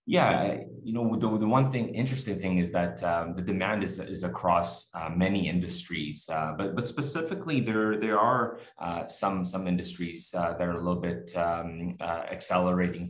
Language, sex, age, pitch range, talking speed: English, male, 20-39, 90-105 Hz, 185 wpm